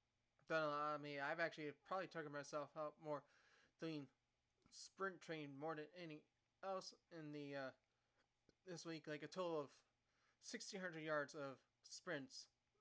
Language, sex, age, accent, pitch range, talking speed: English, male, 20-39, American, 145-170 Hz, 150 wpm